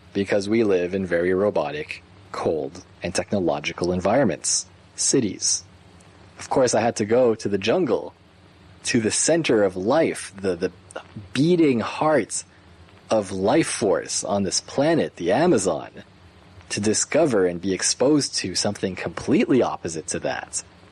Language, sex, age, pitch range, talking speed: English, male, 30-49, 90-110 Hz, 140 wpm